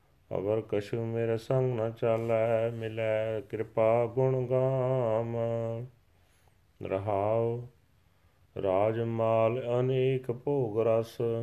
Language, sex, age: Punjabi, male, 40-59